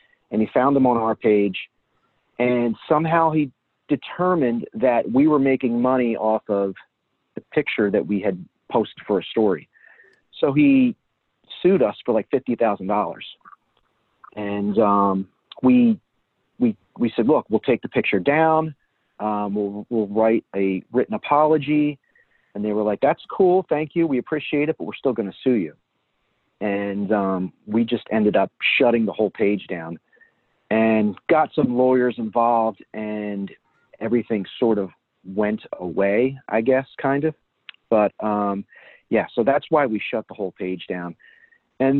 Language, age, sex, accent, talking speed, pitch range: English, 40-59, male, American, 155 wpm, 105-150 Hz